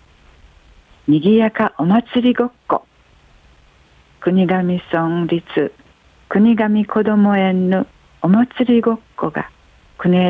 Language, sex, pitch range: Japanese, female, 160-210 Hz